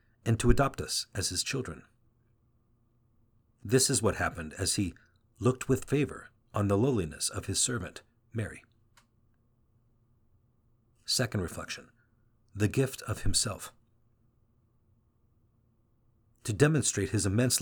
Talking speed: 110 wpm